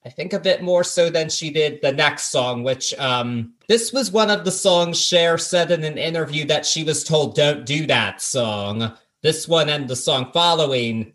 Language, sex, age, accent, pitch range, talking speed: English, male, 30-49, American, 130-170 Hz, 210 wpm